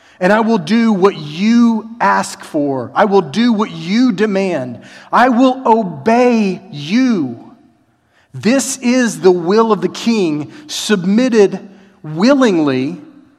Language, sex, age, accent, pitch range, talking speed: English, male, 40-59, American, 145-190 Hz, 120 wpm